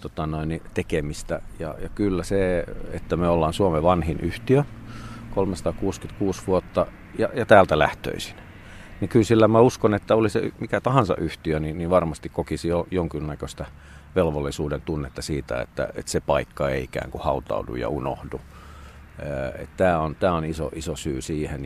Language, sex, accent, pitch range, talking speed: Finnish, male, native, 80-105 Hz, 150 wpm